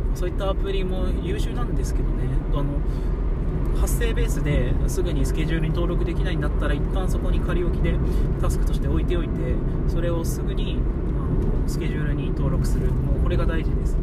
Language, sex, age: Japanese, male, 20-39